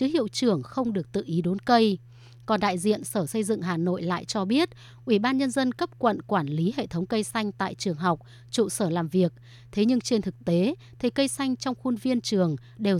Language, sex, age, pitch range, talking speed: Vietnamese, female, 20-39, 175-230 Hz, 240 wpm